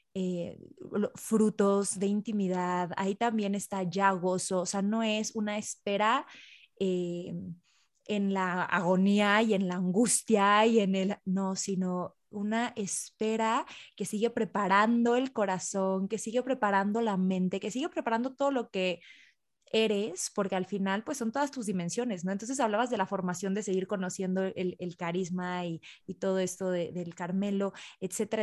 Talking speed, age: 160 wpm, 20-39